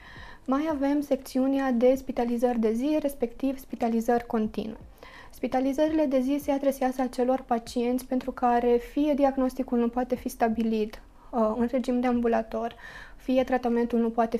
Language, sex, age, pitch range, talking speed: Romanian, female, 20-39, 230-270 Hz, 145 wpm